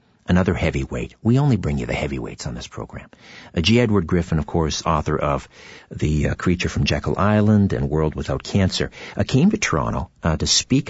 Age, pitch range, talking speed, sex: 50-69, 70-95 Hz, 200 wpm, male